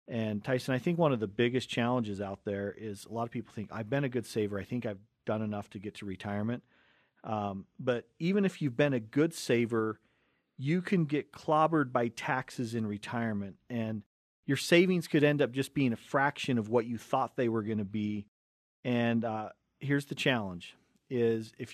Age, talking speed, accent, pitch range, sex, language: 40-59, 205 wpm, American, 110-140 Hz, male, English